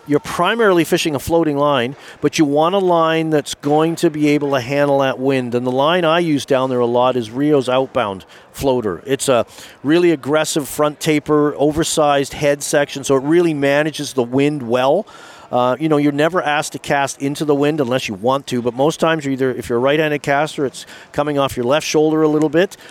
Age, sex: 40-59, male